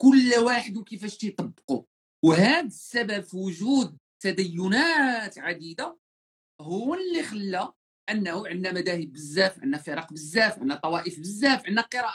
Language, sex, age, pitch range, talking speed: Arabic, male, 40-59, 185-265 Hz, 125 wpm